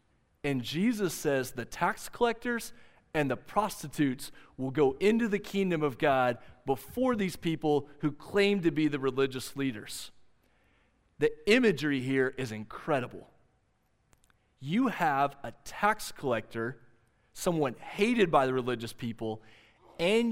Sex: male